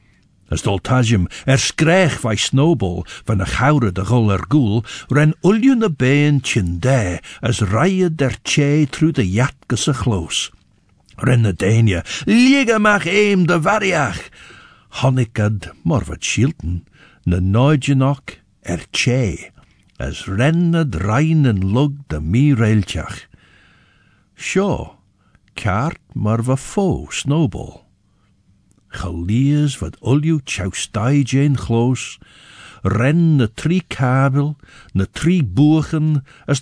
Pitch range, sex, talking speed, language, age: 100-150 Hz, male, 100 wpm, English, 60-79